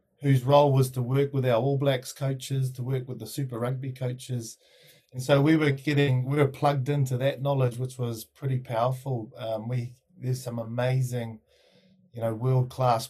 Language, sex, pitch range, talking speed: English, male, 120-140 Hz, 185 wpm